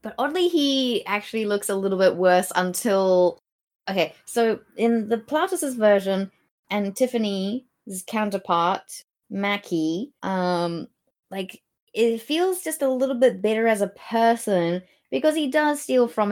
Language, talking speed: English, 135 wpm